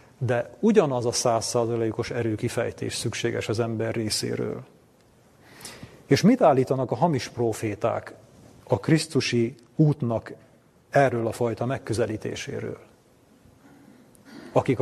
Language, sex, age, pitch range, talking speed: Hungarian, male, 40-59, 110-130 Hz, 95 wpm